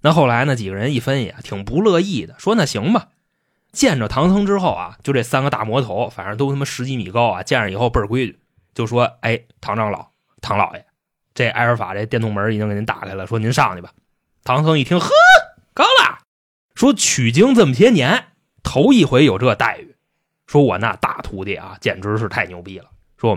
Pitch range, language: 110-150 Hz, Chinese